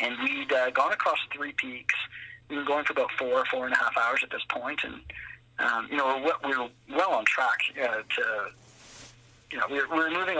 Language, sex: English, male